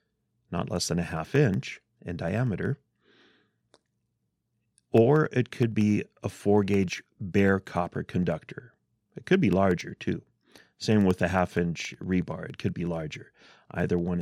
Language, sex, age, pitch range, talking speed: English, male, 30-49, 95-125 Hz, 150 wpm